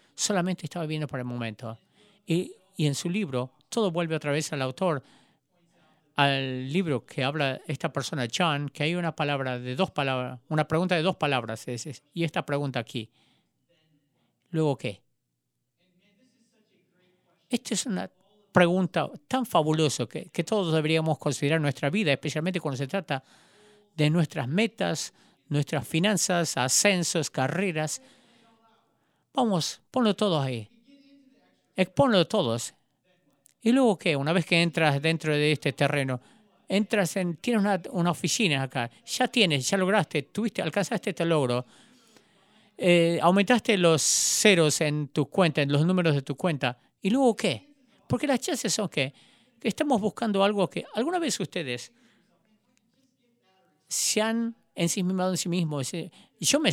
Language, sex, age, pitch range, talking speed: English, male, 50-69, 145-205 Hz, 145 wpm